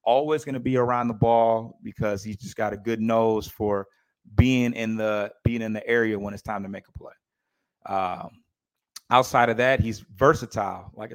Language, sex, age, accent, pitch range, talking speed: English, male, 30-49, American, 110-125 Hz, 195 wpm